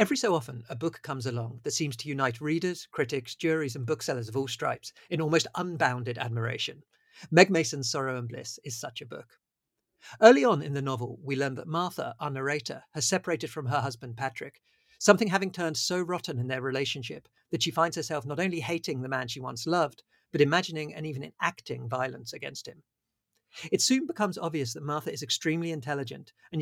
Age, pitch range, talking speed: 50-69, 135-170 Hz, 195 wpm